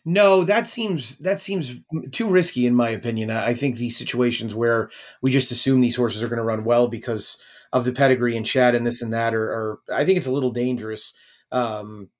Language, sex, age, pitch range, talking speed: English, male, 30-49, 120-135 Hz, 215 wpm